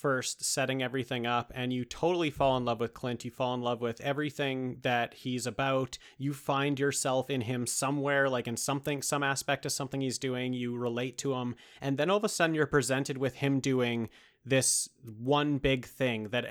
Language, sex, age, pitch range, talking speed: English, male, 30-49, 125-150 Hz, 205 wpm